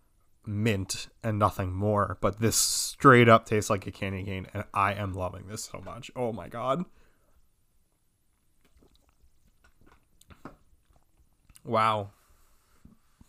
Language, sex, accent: English, male, American